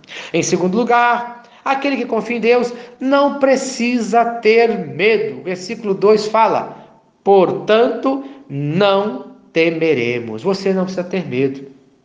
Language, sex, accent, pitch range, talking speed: Portuguese, male, Brazilian, 160-235 Hz, 120 wpm